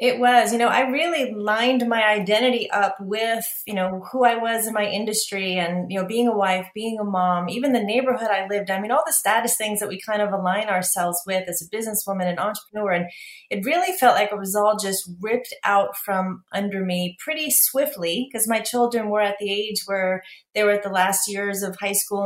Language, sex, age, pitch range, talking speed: English, female, 30-49, 190-225 Hz, 225 wpm